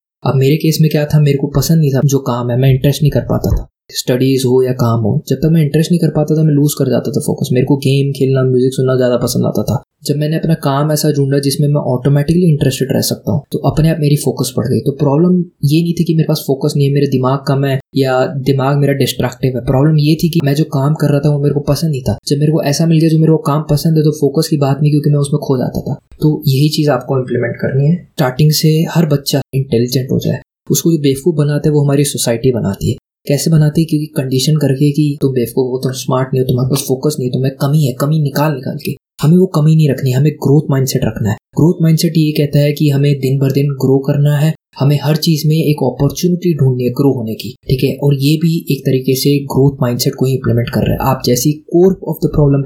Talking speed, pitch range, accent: 270 wpm, 130-150 Hz, native